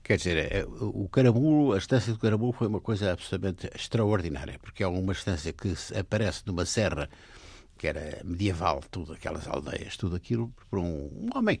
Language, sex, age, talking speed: Portuguese, male, 60-79, 165 wpm